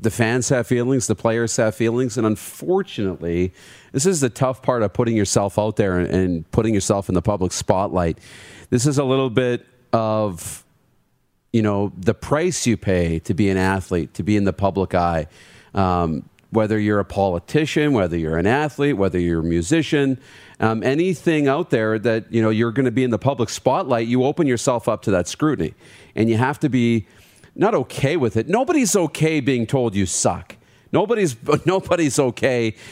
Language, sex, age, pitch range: English, male, 40-59, 100-130 Hz